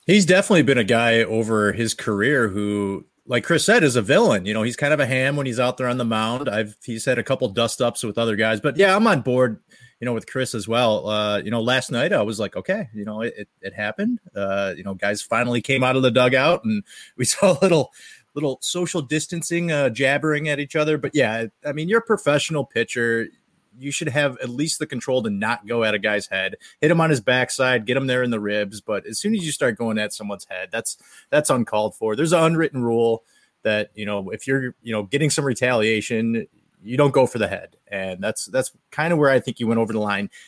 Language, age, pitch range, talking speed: English, 30-49, 110-145 Hz, 250 wpm